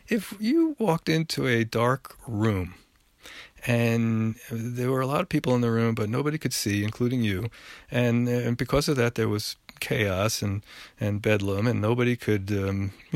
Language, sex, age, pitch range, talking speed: English, male, 40-59, 105-140 Hz, 175 wpm